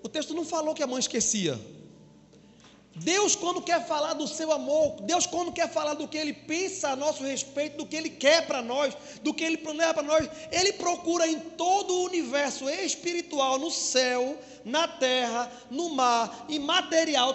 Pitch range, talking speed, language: 250-335 Hz, 185 wpm, Portuguese